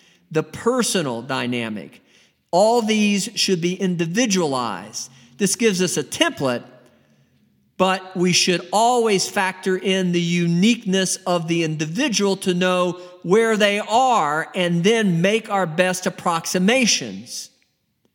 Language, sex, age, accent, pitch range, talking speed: English, male, 50-69, American, 170-215 Hz, 115 wpm